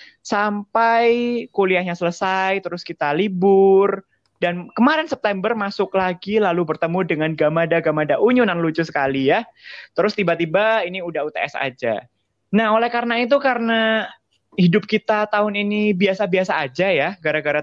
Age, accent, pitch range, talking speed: 20-39, native, 155-205 Hz, 130 wpm